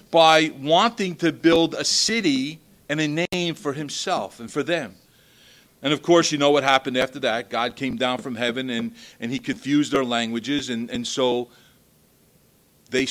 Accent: American